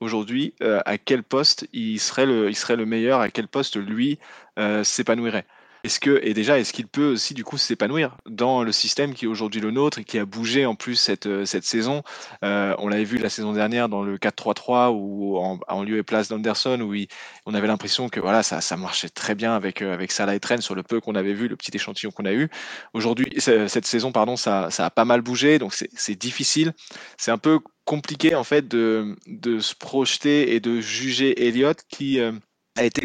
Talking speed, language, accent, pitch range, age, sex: 220 wpm, French, French, 110-135 Hz, 20-39, male